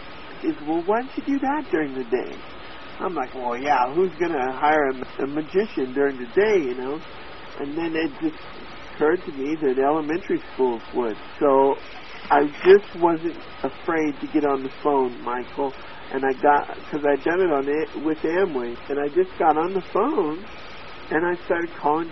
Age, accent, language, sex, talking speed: 50-69, American, English, male, 185 wpm